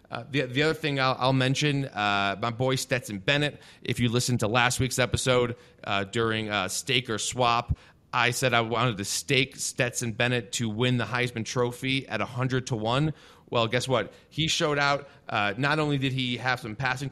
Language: English